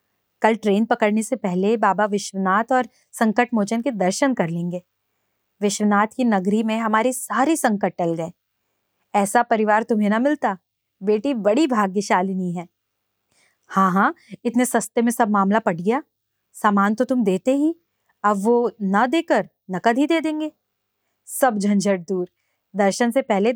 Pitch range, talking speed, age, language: 190-245 Hz, 155 wpm, 20-39, Hindi